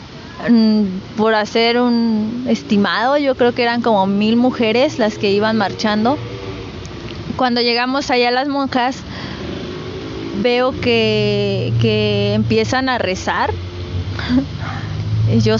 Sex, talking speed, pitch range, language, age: female, 110 wpm, 200-245 Hz, Spanish, 20-39